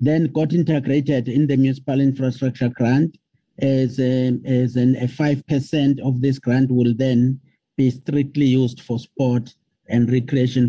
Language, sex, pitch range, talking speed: English, male, 125-145 Hz, 145 wpm